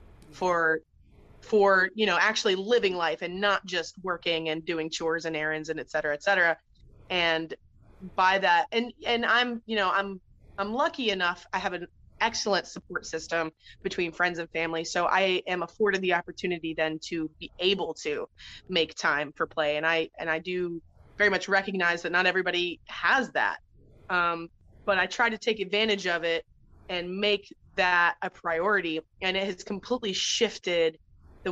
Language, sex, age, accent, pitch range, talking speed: English, female, 20-39, American, 170-200 Hz, 175 wpm